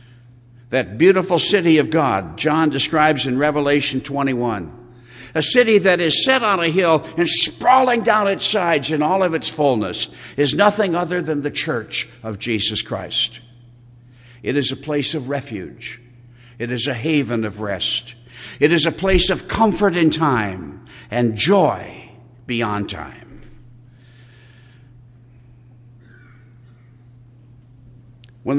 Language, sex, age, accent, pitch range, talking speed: English, male, 60-79, American, 120-160 Hz, 130 wpm